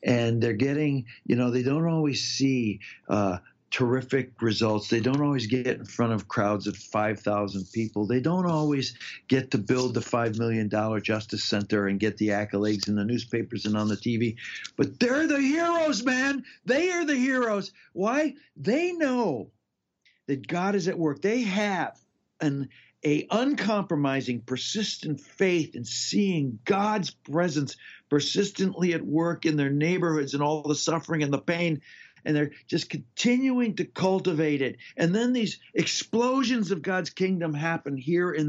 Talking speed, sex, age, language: 160 wpm, male, 60-79, English